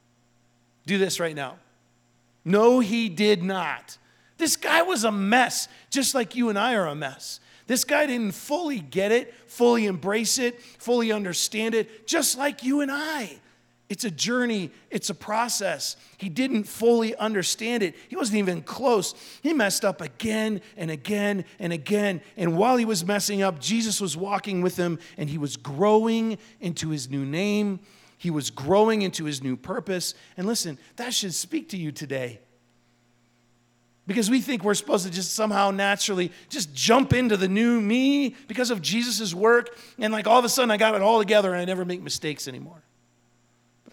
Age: 40-59